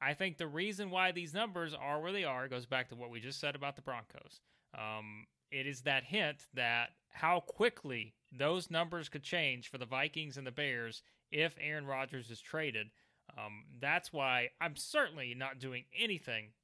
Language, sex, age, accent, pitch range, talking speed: English, male, 30-49, American, 125-170 Hz, 190 wpm